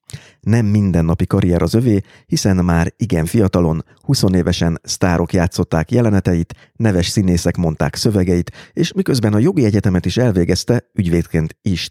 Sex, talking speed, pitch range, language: male, 130 wpm, 85-110 Hz, Hungarian